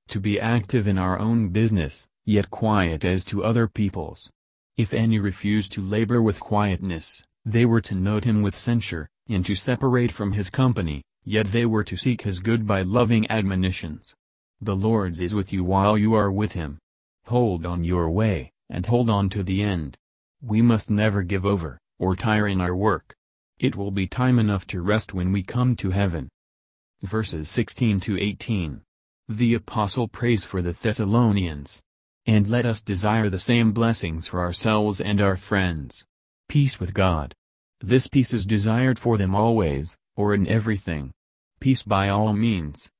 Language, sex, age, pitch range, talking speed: English, male, 30-49, 90-110 Hz, 175 wpm